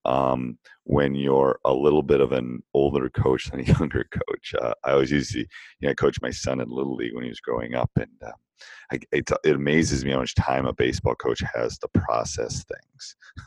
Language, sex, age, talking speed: English, male, 40-59, 225 wpm